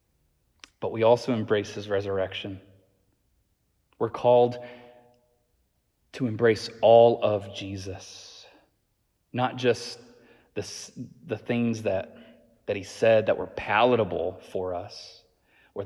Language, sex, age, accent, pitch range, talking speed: English, male, 30-49, American, 100-120 Hz, 105 wpm